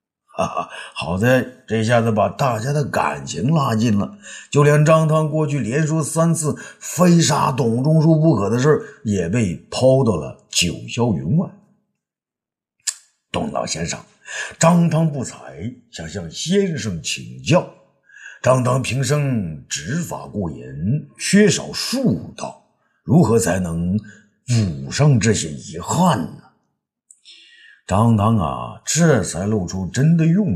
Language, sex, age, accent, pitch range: Chinese, male, 50-69, native, 105-160 Hz